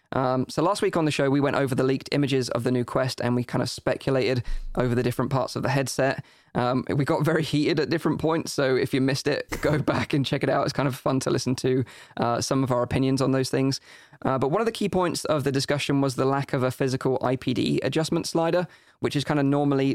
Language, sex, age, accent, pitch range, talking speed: English, male, 20-39, British, 125-145 Hz, 260 wpm